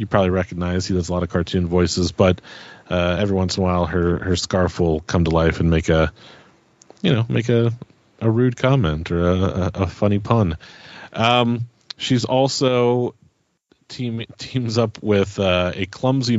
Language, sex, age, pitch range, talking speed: English, male, 30-49, 85-110 Hz, 180 wpm